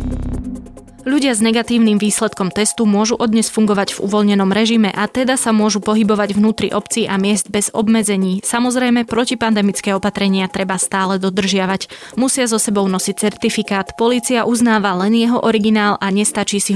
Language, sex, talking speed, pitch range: Slovak, female, 145 wpm, 195-225 Hz